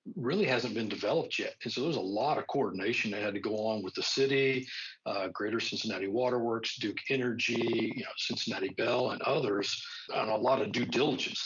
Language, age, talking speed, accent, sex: English, 50-69, 200 wpm, American, male